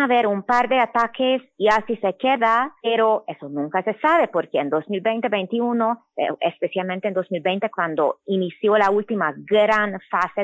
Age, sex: 20-39, female